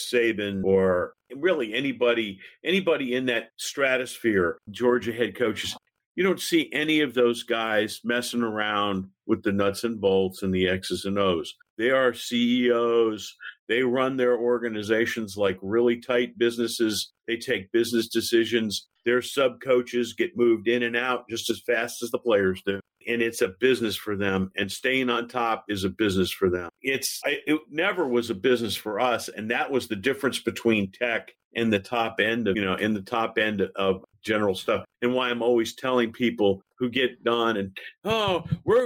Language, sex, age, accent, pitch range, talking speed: English, male, 50-69, American, 110-135 Hz, 180 wpm